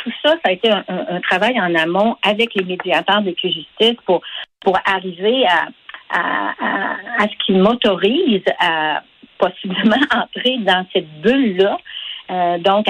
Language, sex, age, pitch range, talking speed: French, female, 50-69, 175-225 Hz, 160 wpm